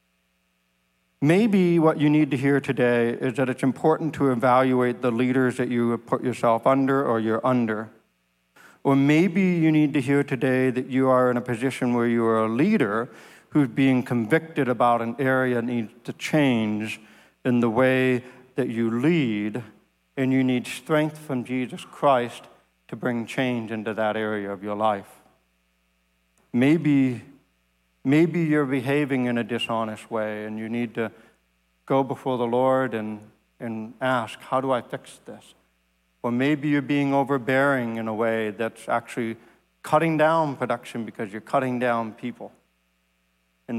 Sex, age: male, 60-79